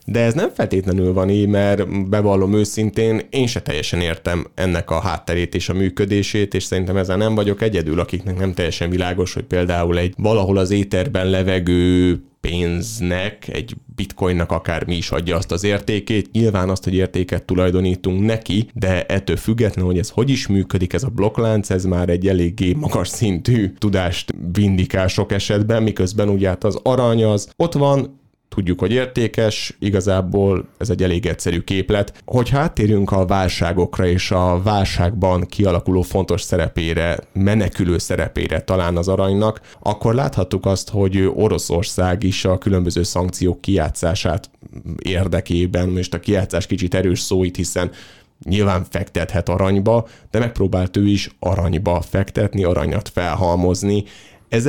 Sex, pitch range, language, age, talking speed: male, 90-105 Hz, Hungarian, 30-49, 145 wpm